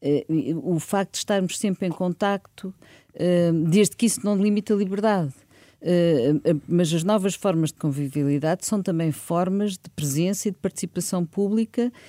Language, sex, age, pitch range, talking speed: Portuguese, female, 50-69, 165-210 Hz, 145 wpm